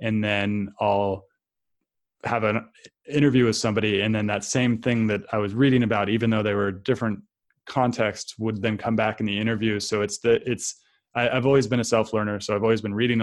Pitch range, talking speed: 105-115 Hz, 210 wpm